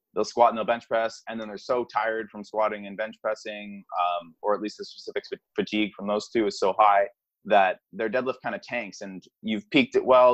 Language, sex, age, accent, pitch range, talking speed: English, male, 20-39, American, 95-115 Hz, 230 wpm